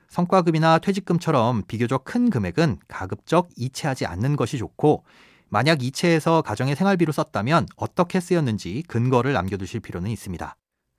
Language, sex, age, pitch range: Korean, male, 30-49, 115-170 Hz